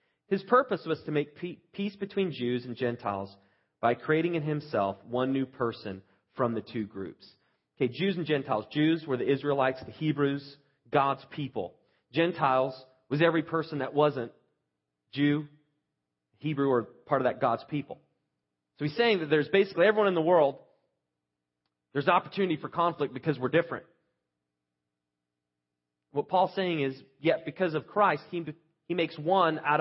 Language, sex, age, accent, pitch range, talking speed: English, male, 30-49, American, 95-155 Hz, 155 wpm